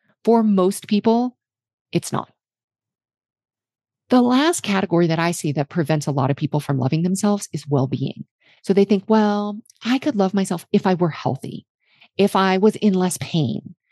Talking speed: 175 wpm